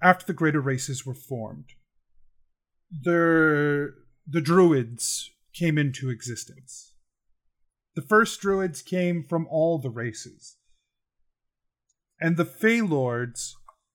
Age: 30-49